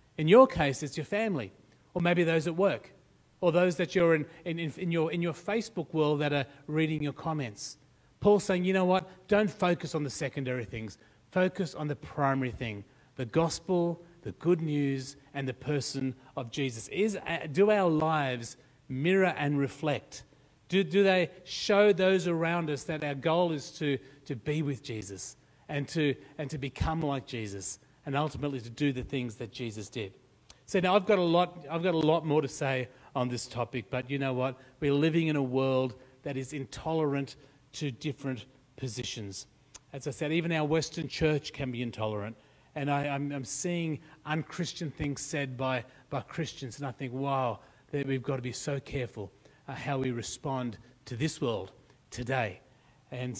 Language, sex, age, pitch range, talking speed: English, male, 30-49, 130-165 Hz, 185 wpm